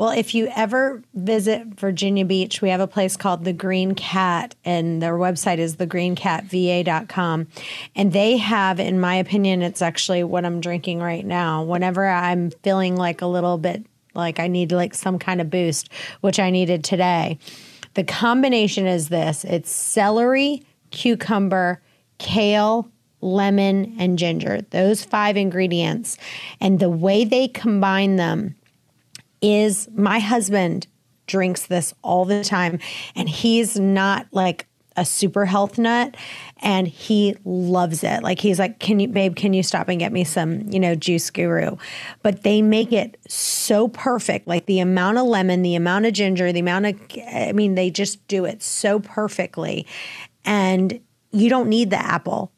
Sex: female